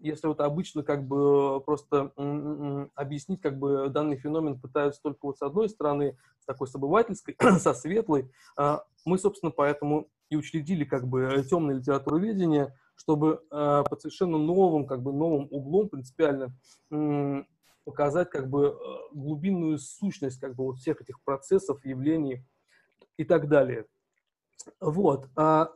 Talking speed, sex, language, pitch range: 130 wpm, male, Russian, 140-160 Hz